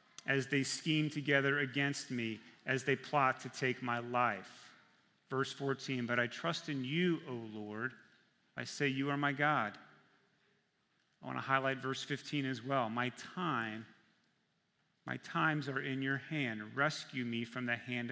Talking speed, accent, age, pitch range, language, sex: 160 wpm, American, 40-59, 120-145 Hz, English, male